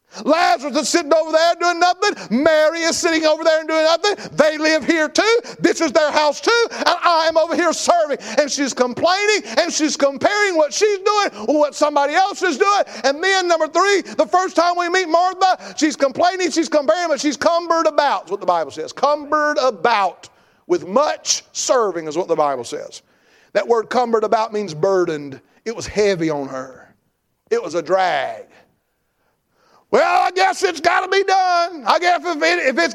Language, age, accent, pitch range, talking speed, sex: English, 50-69, American, 230-345 Hz, 190 wpm, male